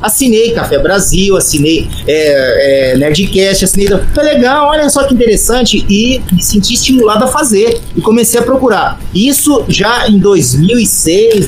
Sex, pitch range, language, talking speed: male, 185-240 Hz, Portuguese, 135 wpm